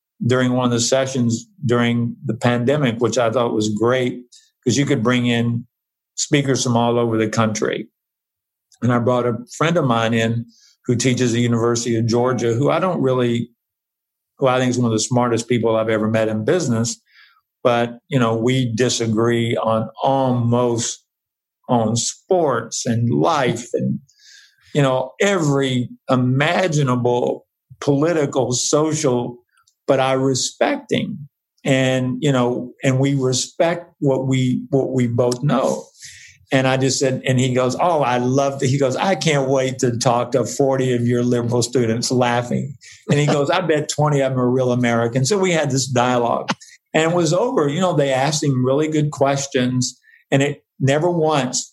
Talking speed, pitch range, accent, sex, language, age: 170 wpm, 120-140 Hz, American, male, English, 50-69